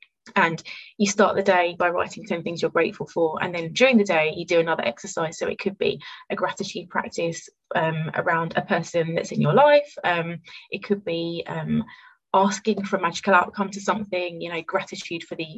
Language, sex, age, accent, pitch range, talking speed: English, female, 20-39, British, 170-210 Hz, 205 wpm